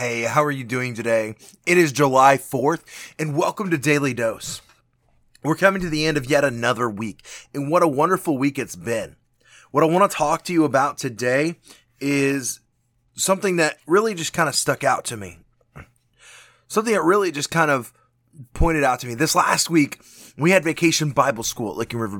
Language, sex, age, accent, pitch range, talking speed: English, male, 20-39, American, 125-175 Hz, 195 wpm